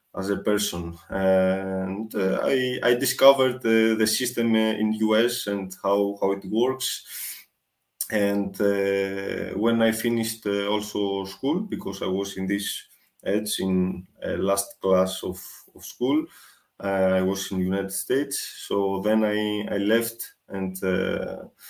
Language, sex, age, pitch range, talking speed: English, male, 20-39, 95-110 Hz, 140 wpm